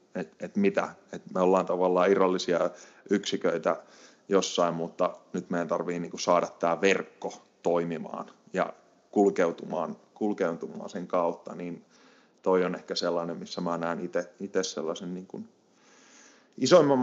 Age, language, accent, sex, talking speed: 30-49, Finnish, native, male, 125 wpm